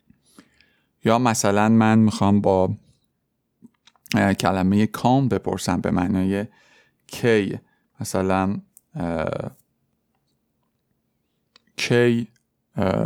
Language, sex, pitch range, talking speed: Persian, male, 95-120 Hz, 60 wpm